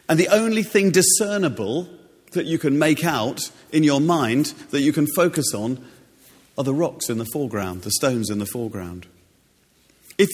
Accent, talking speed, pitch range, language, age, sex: British, 175 wpm, 120-155 Hz, English, 40-59, male